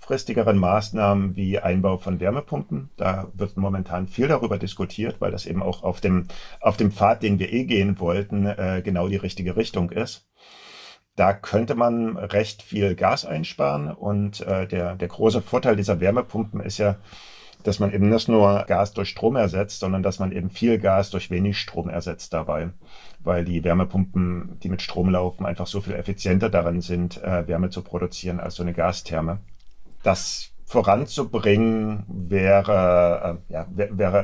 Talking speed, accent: 170 wpm, German